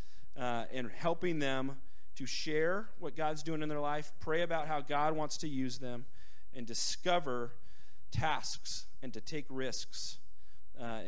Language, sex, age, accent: English, male, 30-49, American